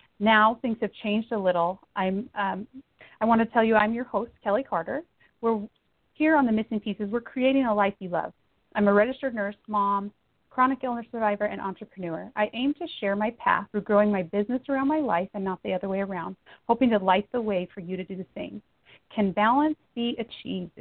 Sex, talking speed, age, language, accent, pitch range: female, 215 wpm, 30-49, English, American, 195-260 Hz